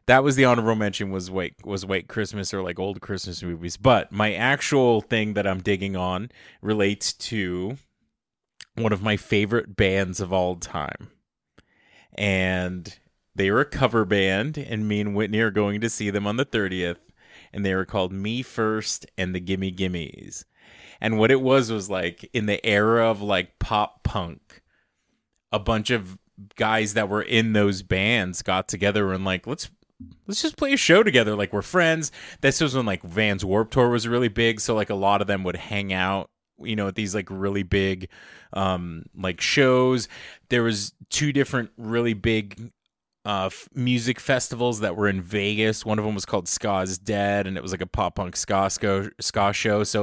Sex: male